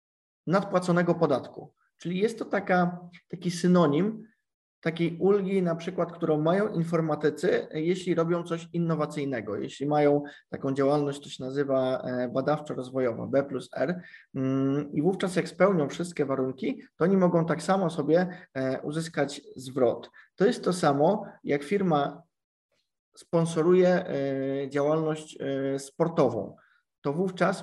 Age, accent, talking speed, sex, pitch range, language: 20-39, native, 115 wpm, male, 140-175 Hz, Polish